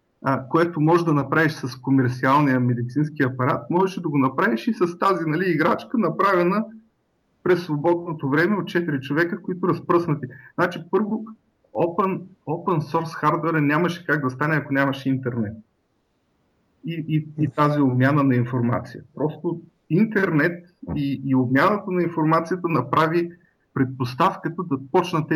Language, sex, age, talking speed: Bulgarian, male, 30-49, 135 wpm